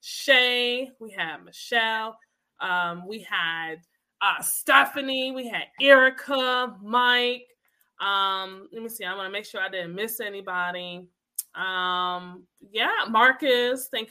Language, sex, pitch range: English, female, 200-260 Hz